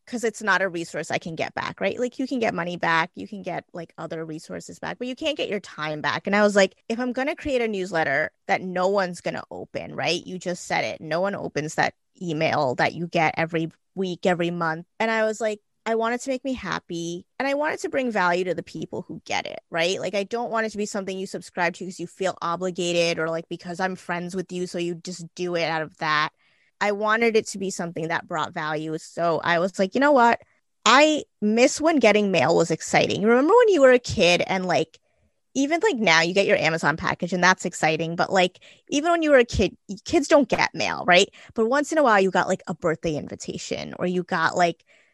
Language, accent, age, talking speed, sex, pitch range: English, American, 20-39, 250 wpm, female, 170-240 Hz